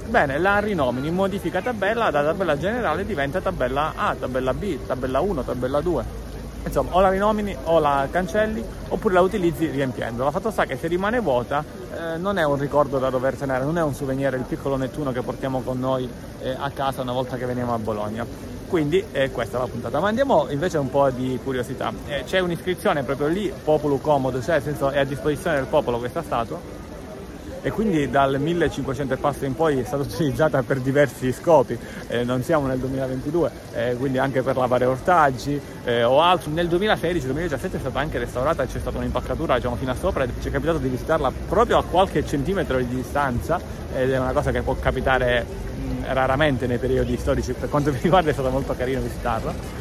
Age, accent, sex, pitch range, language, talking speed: 30-49, native, male, 130-160 Hz, Italian, 200 wpm